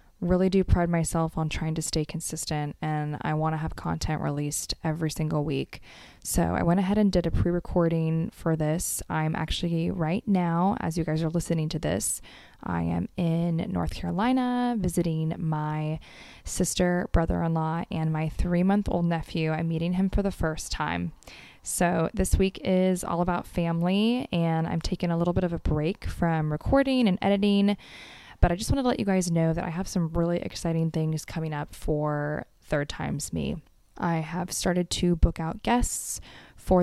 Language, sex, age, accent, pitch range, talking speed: English, female, 20-39, American, 160-185 Hz, 185 wpm